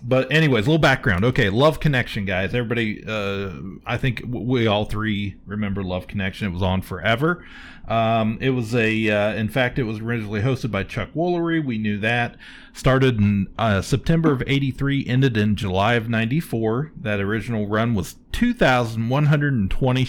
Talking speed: 165 wpm